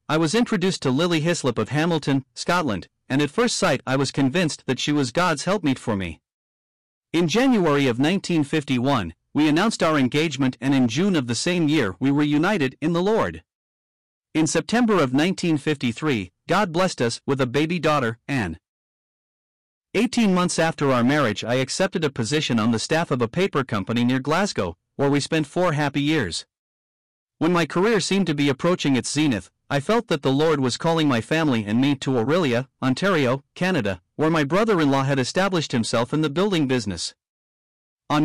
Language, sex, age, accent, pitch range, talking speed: English, male, 40-59, American, 125-165 Hz, 185 wpm